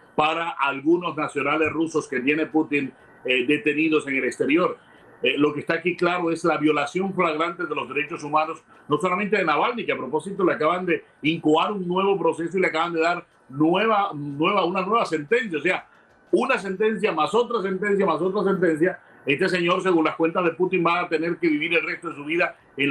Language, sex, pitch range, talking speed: Spanish, male, 150-180 Hz, 205 wpm